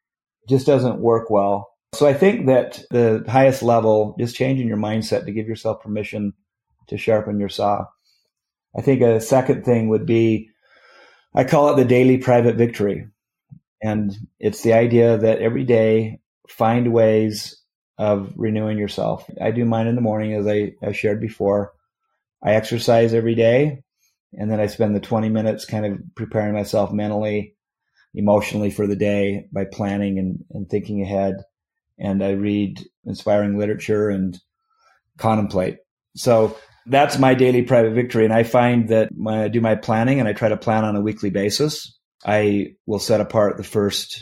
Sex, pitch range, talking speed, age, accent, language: male, 105-115 Hz, 165 wpm, 30-49, American, English